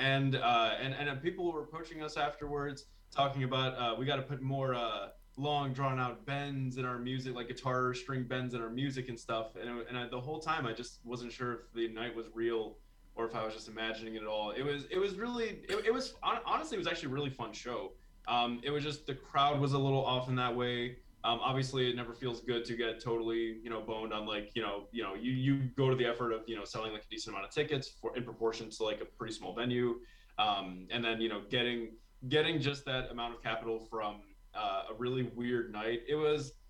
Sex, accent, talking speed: male, American, 245 wpm